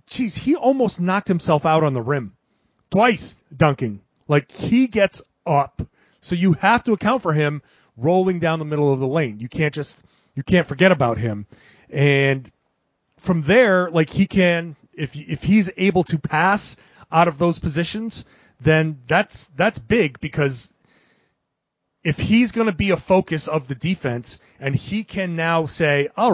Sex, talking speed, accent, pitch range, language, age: male, 170 wpm, American, 140-180 Hz, English, 30-49